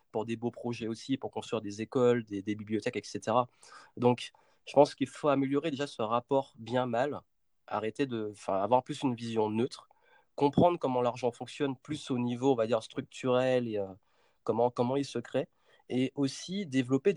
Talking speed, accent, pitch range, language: 185 wpm, French, 115-140 Hz, French